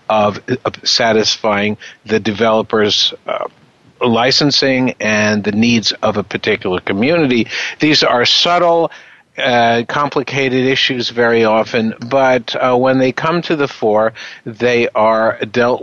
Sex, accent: male, American